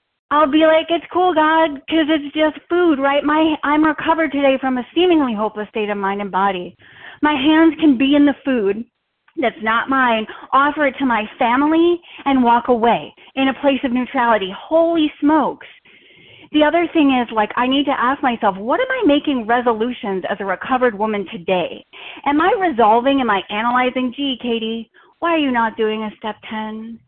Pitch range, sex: 225-300 Hz, female